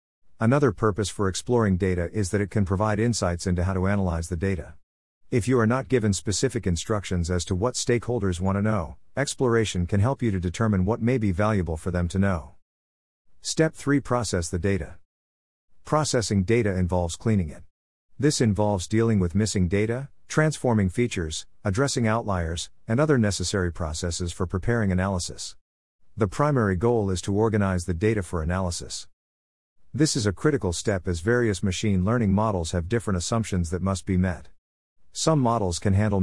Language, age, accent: English, 50-69, American